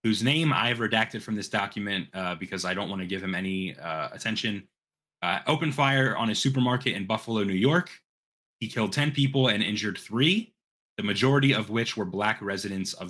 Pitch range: 95-120 Hz